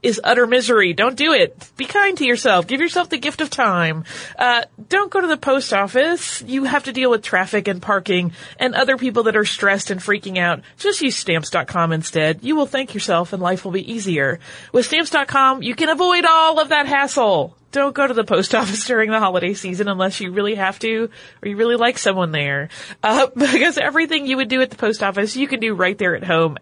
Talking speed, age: 225 wpm, 30-49